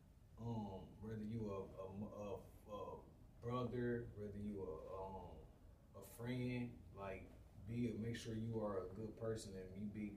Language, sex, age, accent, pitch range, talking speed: English, male, 20-39, American, 100-115 Hz, 155 wpm